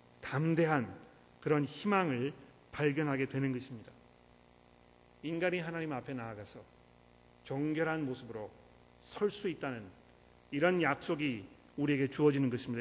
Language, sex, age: Korean, male, 40-59